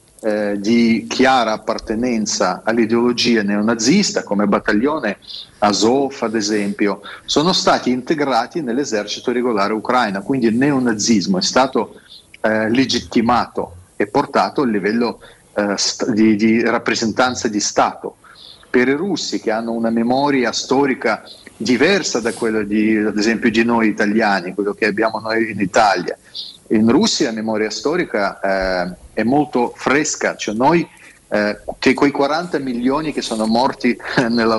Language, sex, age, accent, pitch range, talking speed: Italian, male, 30-49, native, 110-125 Hz, 125 wpm